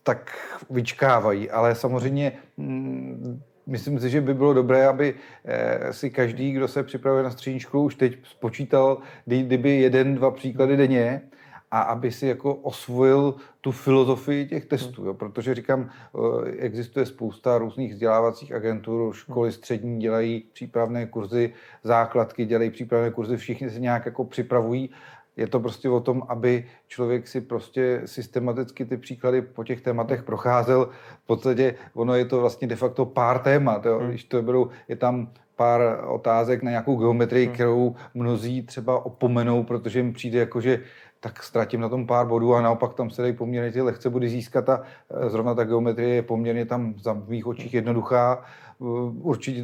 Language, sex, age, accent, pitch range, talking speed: Czech, male, 40-59, native, 120-130 Hz, 155 wpm